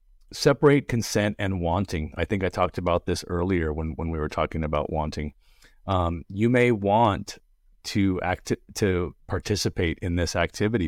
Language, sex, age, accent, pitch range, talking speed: English, male, 30-49, American, 85-105 Hz, 165 wpm